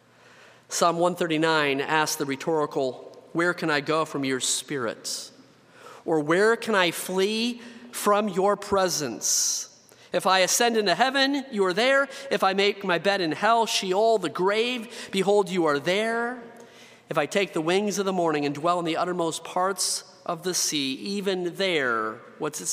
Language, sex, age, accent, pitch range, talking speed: English, male, 40-59, American, 155-200 Hz, 165 wpm